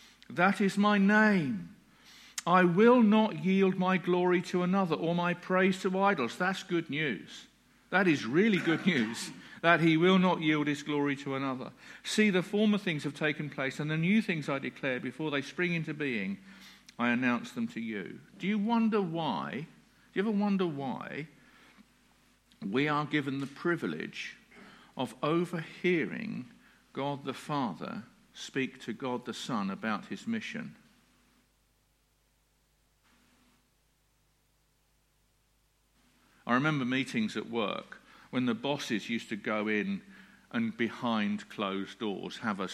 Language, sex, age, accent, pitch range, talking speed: English, male, 50-69, British, 140-205 Hz, 145 wpm